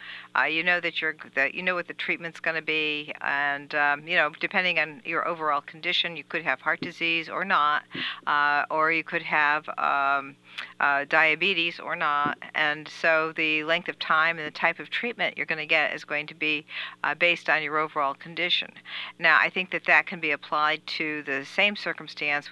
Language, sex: English, female